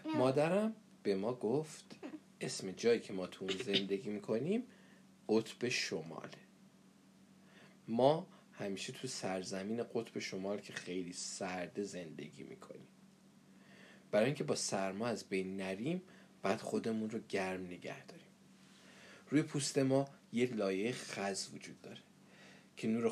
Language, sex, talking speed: Persian, male, 125 wpm